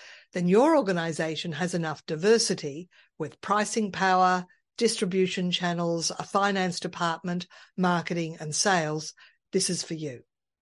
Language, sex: English, female